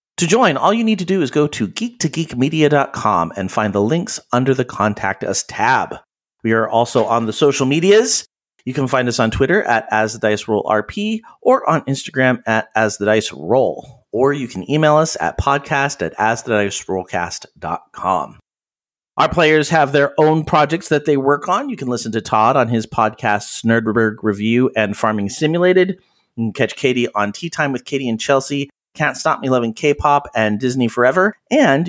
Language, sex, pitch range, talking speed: English, male, 110-155 Hz, 190 wpm